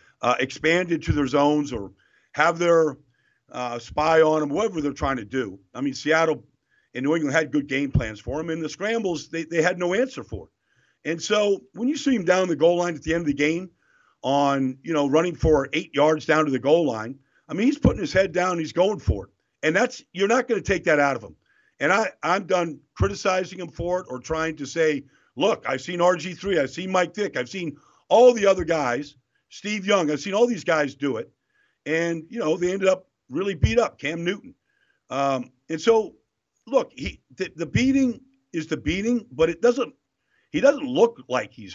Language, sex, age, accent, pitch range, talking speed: English, male, 50-69, American, 145-200 Hz, 225 wpm